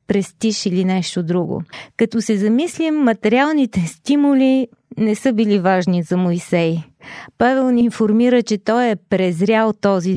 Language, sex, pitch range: Bulgarian, female, 195-240 Hz